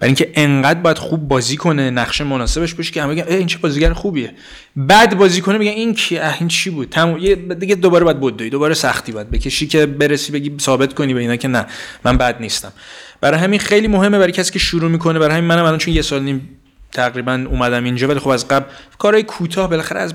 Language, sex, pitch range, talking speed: Persian, male, 130-175 Hz, 220 wpm